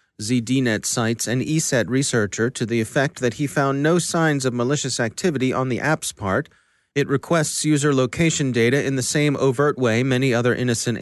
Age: 30-49